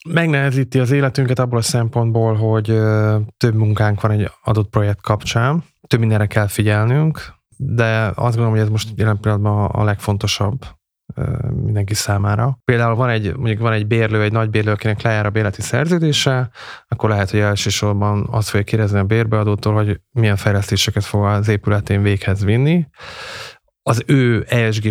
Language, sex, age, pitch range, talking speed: Hungarian, male, 20-39, 105-120 Hz, 155 wpm